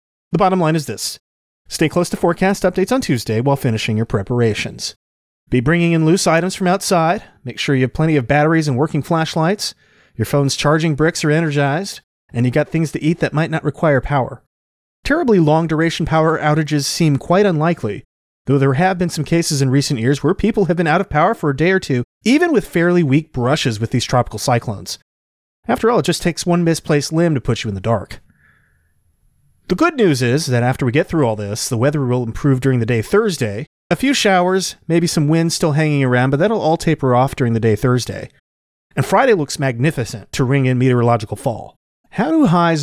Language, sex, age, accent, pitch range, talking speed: English, male, 30-49, American, 120-165 Hz, 210 wpm